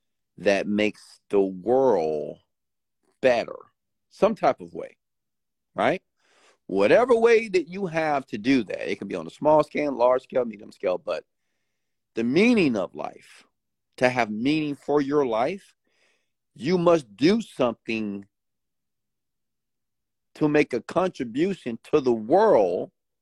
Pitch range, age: 105-150 Hz, 50-69